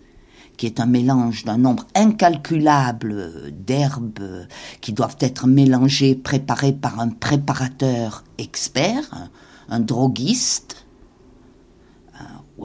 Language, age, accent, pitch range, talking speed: French, 50-69, French, 130-195 Hz, 95 wpm